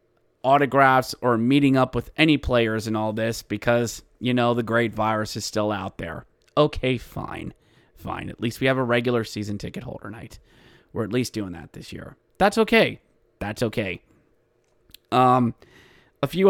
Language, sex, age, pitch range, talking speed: English, male, 30-49, 115-145 Hz, 170 wpm